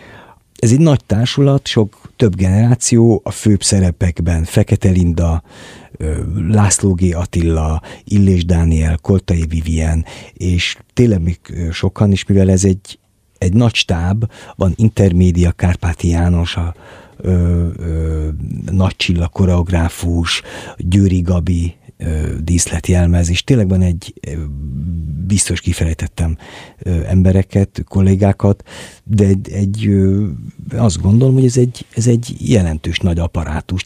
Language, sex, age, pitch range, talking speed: Hungarian, male, 50-69, 85-105 Hz, 115 wpm